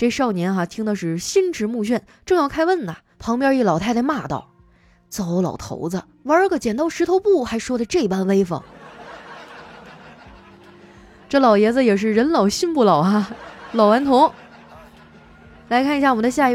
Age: 20-39